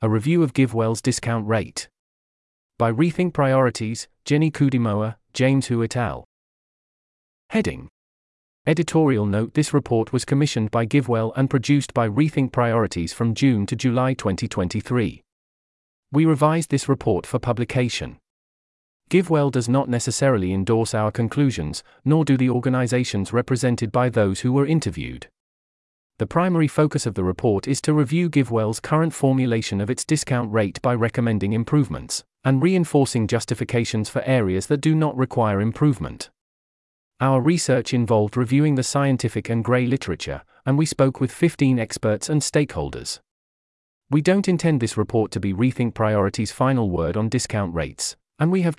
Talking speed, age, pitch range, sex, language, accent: 150 wpm, 30-49, 110-140 Hz, male, English, British